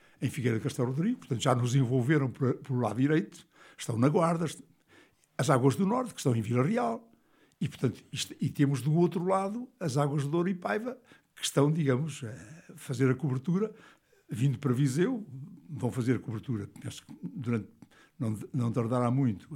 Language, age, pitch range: Portuguese, 60-79, 130-175 Hz